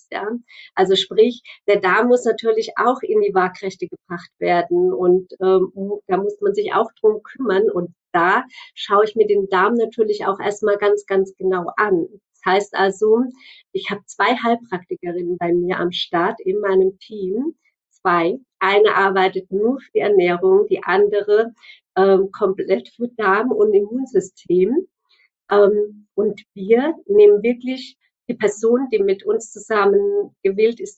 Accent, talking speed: German, 145 wpm